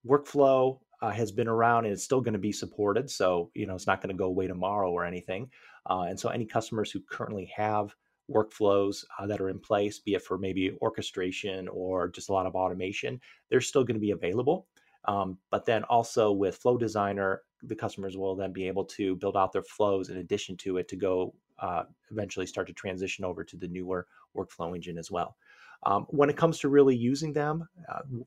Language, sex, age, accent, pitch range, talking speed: English, male, 30-49, American, 95-125 Hz, 215 wpm